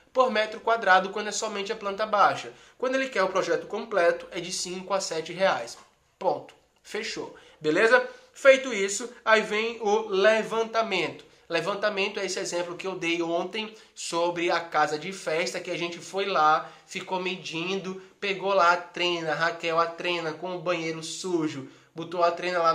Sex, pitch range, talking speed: male, 170-205 Hz, 170 wpm